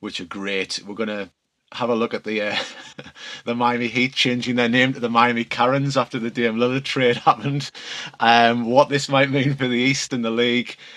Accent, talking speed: British, 215 wpm